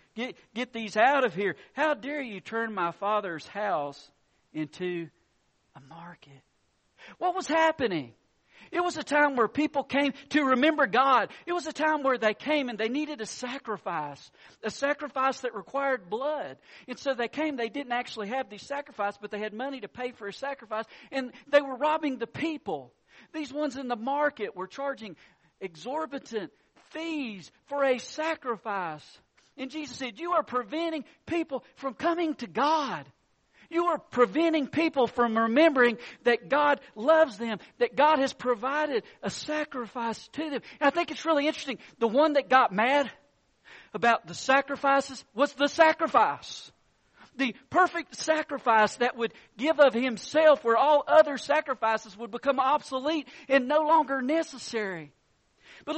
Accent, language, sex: American, English, male